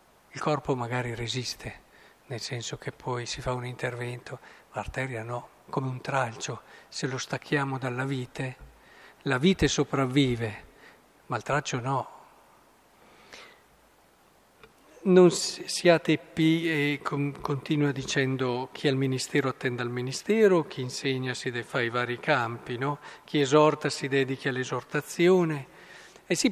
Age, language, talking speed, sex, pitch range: 50-69, Italian, 135 wpm, male, 125-150 Hz